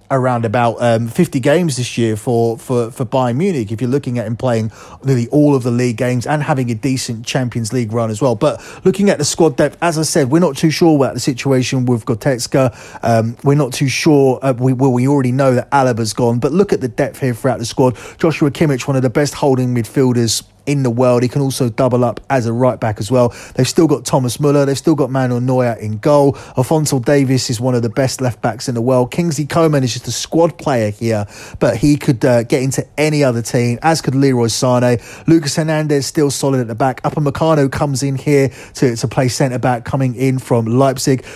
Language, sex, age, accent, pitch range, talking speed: English, male, 30-49, British, 125-145 Hz, 235 wpm